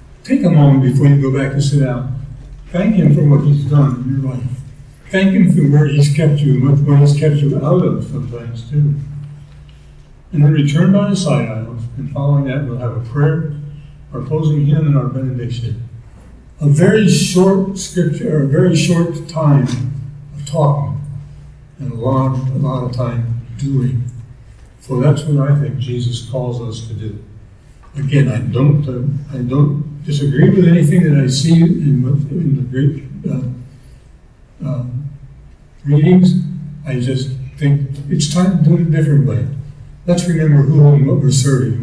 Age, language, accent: 60-79, English, American